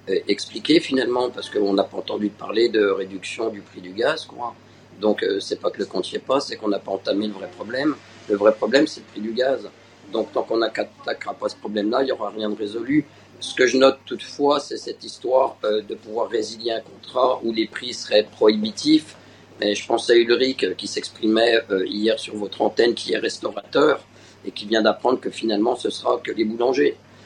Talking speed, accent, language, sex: 225 wpm, French, French, male